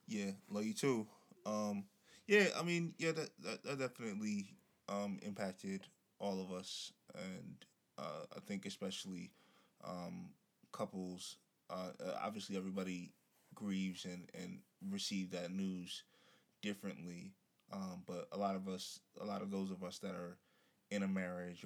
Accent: American